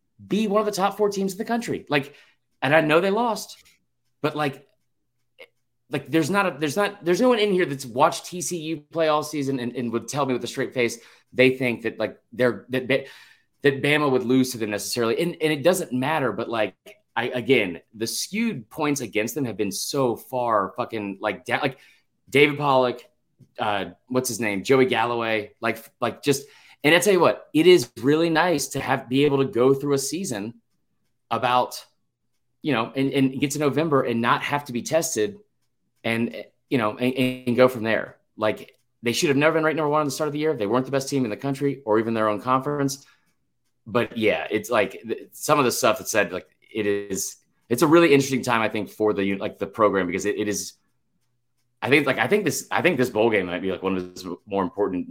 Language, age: English, 30-49